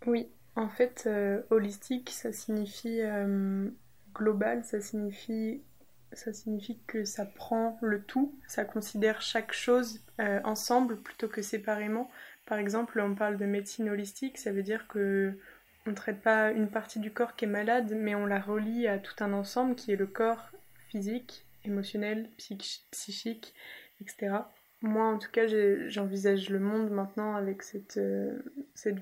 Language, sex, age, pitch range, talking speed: French, female, 20-39, 200-220 Hz, 155 wpm